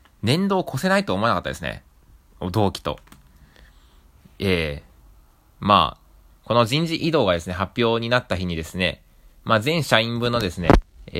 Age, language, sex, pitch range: 20-39, Japanese, male, 80-130 Hz